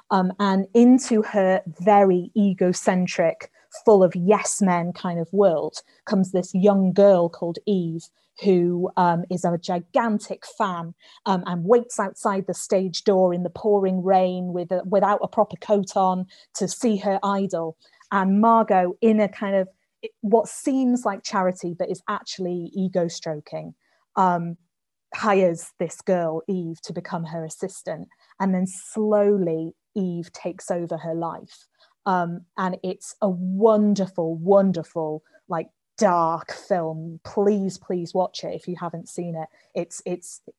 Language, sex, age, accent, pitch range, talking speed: English, female, 30-49, British, 175-200 Hz, 135 wpm